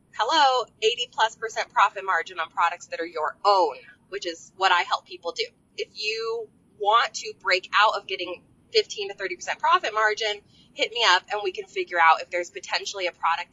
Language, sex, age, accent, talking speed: English, female, 20-39, American, 205 wpm